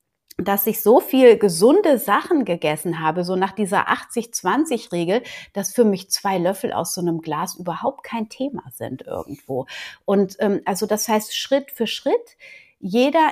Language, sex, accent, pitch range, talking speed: German, female, German, 185-240 Hz, 160 wpm